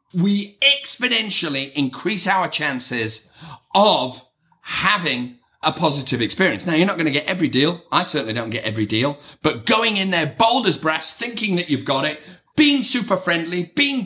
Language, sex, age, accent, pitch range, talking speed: English, male, 40-59, British, 145-215 Hz, 170 wpm